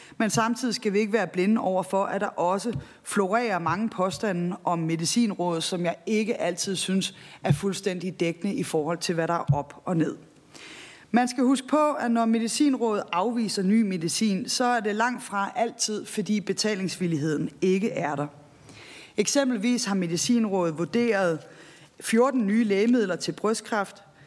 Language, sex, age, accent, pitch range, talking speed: Danish, female, 30-49, native, 175-230 Hz, 160 wpm